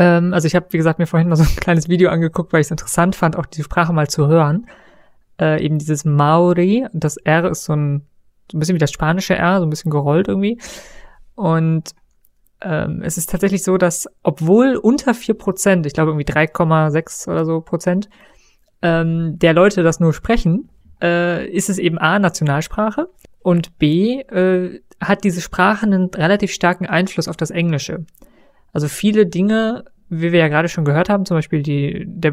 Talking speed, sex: 185 wpm, female